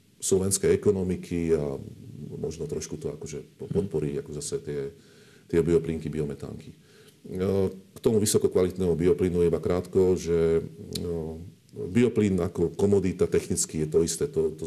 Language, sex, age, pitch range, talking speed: Slovak, male, 40-59, 80-90 Hz, 125 wpm